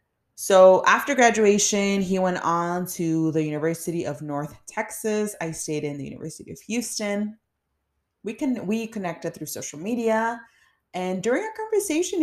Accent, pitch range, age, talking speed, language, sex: American, 165-220 Hz, 30-49, 145 wpm, English, female